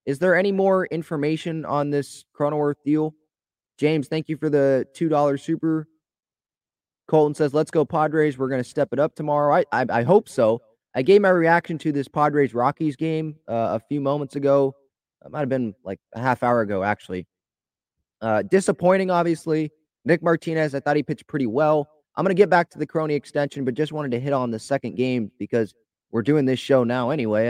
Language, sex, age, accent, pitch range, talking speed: English, male, 20-39, American, 125-160 Hz, 200 wpm